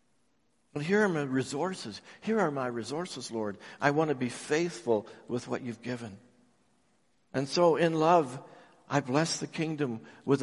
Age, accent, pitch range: 60-79, American, 125-165 Hz